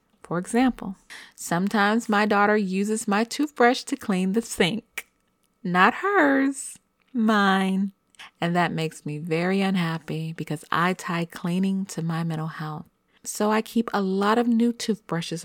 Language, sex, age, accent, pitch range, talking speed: English, female, 30-49, American, 165-220 Hz, 145 wpm